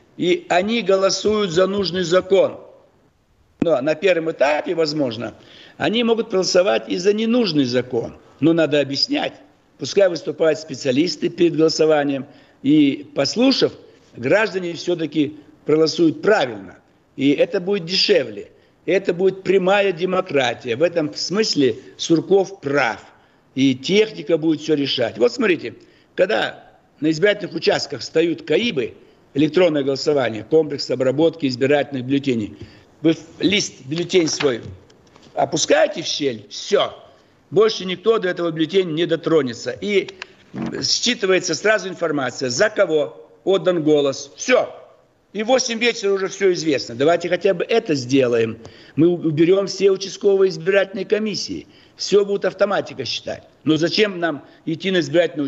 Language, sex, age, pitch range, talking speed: Russian, male, 60-79, 150-200 Hz, 125 wpm